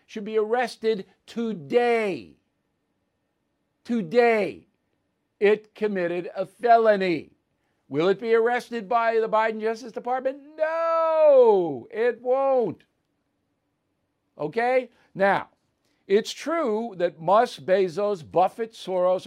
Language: English